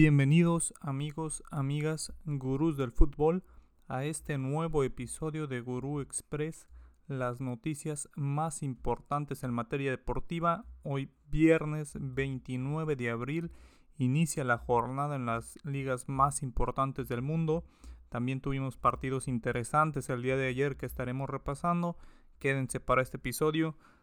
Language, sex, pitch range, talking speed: Spanish, male, 125-145 Hz, 125 wpm